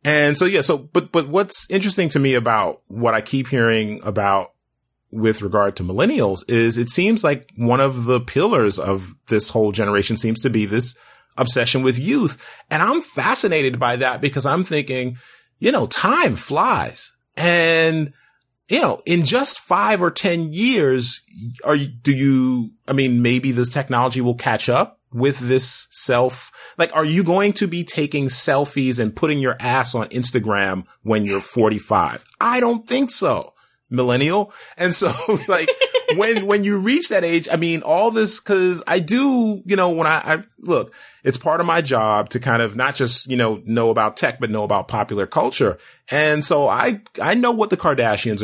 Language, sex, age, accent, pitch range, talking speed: English, male, 30-49, American, 120-170 Hz, 185 wpm